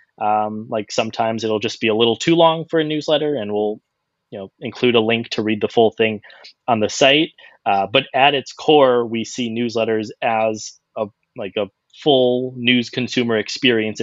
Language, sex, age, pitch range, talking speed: English, male, 20-39, 105-135 Hz, 190 wpm